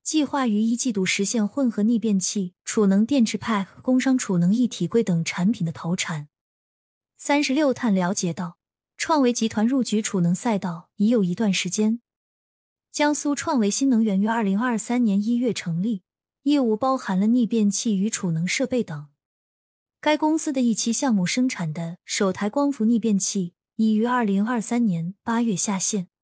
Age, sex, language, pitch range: 20-39, female, Chinese, 195-250 Hz